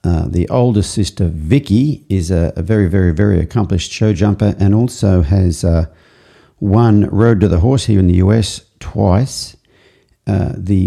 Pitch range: 95-110 Hz